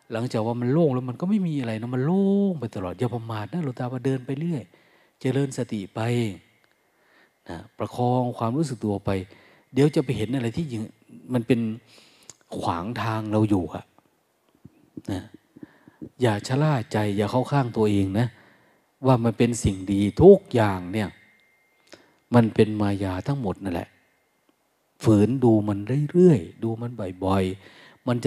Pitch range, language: 105-135 Hz, Thai